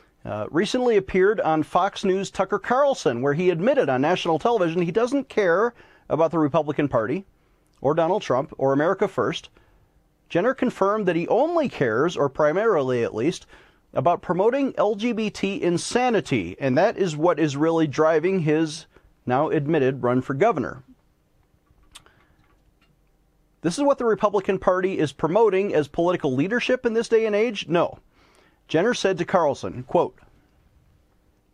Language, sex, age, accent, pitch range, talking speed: English, male, 40-59, American, 150-215 Hz, 145 wpm